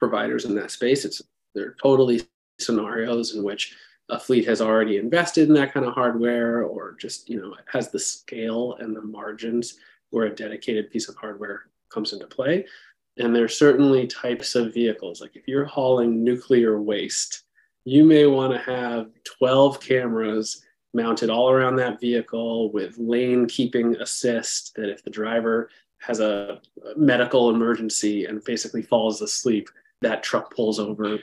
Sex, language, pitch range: male, English, 115-130 Hz